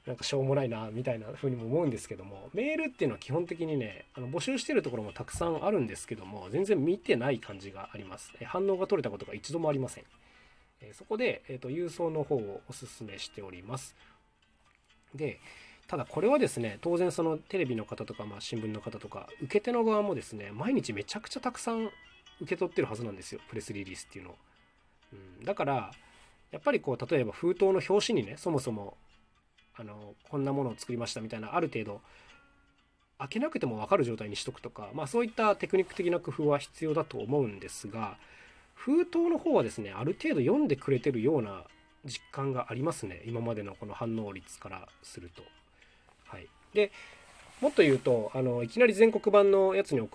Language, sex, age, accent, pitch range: Japanese, male, 20-39, native, 110-180 Hz